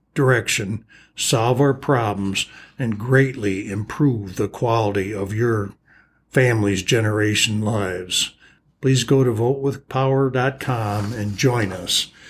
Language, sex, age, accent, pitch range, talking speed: English, male, 60-79, American, 105-135 Hz, 105 wpm